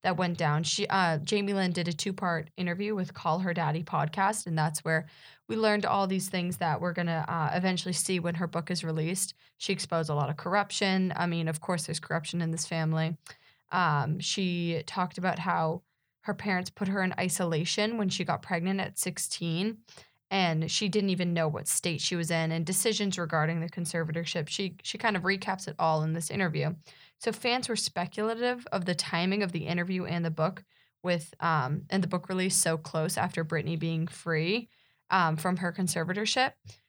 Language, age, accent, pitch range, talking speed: English, 20-39, American, 160-190 Hz, 200 wpm